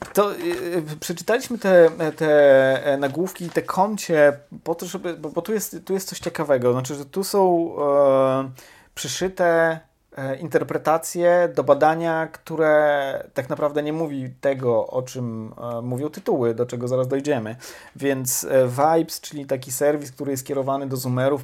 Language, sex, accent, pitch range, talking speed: Polish, male, native, 125-150 Hz, 150 wpm